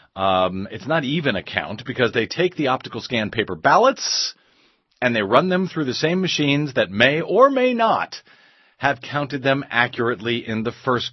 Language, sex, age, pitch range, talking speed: English, male, 40-59, 115-155 Hz, 185 wpm